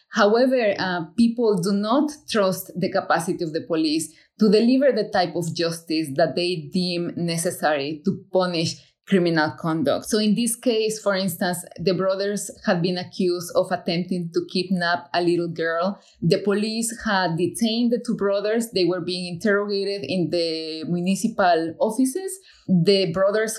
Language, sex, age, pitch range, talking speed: English, female, 20-39, 170-210 Hz, 155 wpm